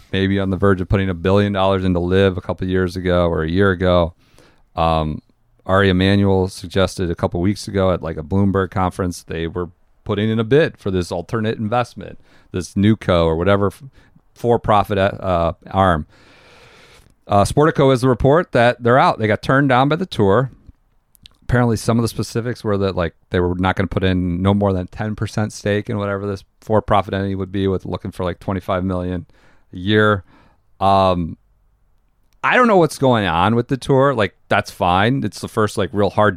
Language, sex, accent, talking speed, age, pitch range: English, male, American, 200 wpm, 40-59, 90-110 Hz